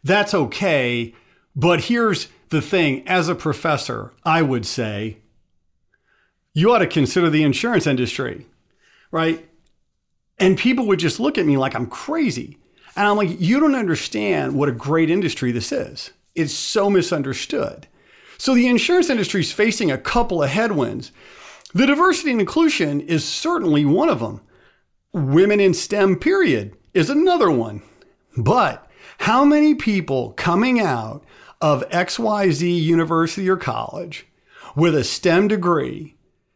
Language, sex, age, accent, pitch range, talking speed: English, male, 40-59, American, 150-215 Hz, 140 wpm